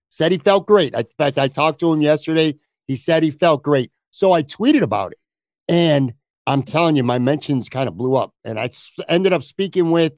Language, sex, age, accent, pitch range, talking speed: English, male, 50-69, American, 135-170 Hz, 220 wpm